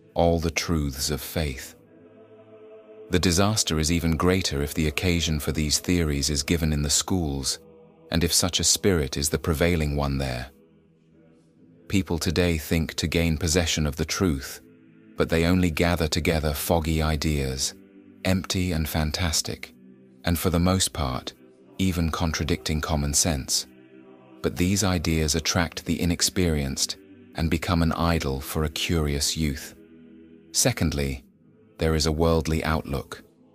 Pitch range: 75-90 Hz